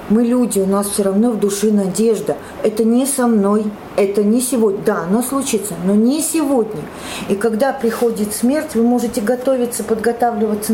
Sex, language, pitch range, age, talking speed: female, Russian, 200-235 Hz, 40-59, 170 wpm